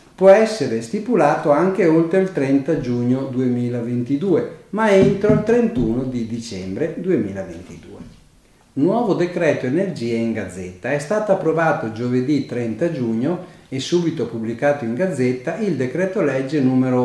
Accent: native